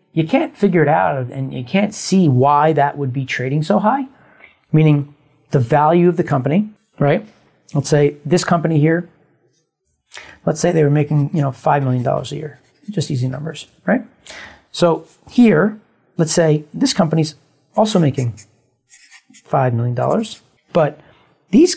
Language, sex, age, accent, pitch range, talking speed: English, male, 40-59, American, 140-175 Hz, 150 wpm